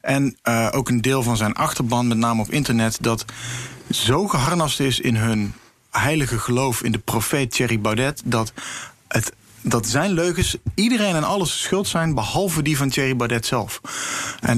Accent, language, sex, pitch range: Dutch, Dutch, male, 110-125 Hz